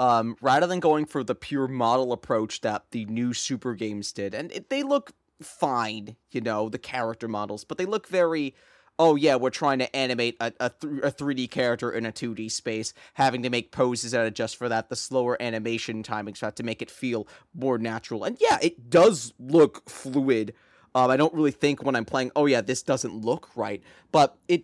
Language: English